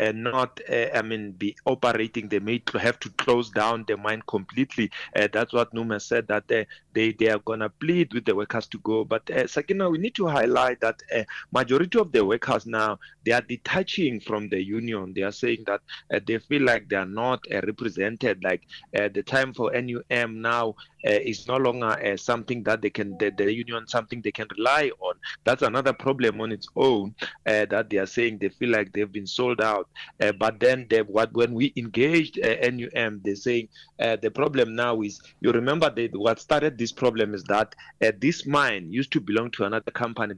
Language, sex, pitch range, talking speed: English, male, 110-130 Hz, 215 wpm